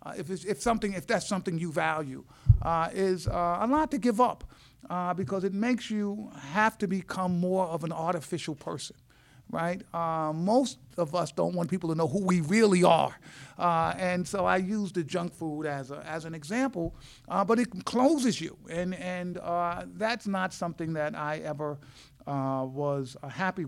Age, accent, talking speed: 50-69, American, 195 wpm